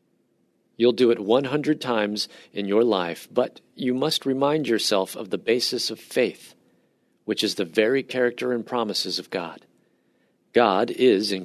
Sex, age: male, 40-59